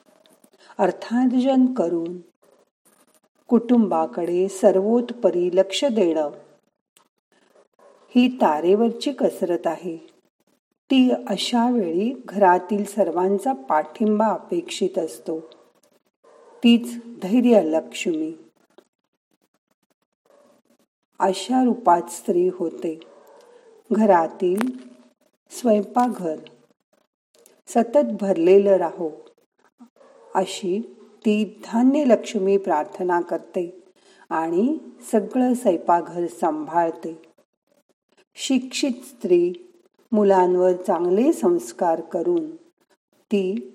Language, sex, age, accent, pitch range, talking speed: Marathi, female, 40-59, native, 180-250 Hz, 65 wpm